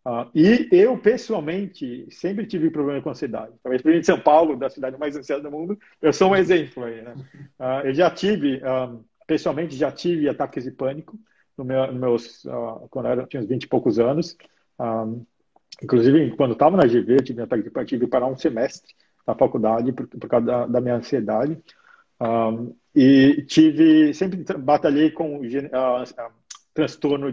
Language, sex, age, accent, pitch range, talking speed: Portuguese, male, 50-69, Brazilian, 130-175 Hz, 185 wpm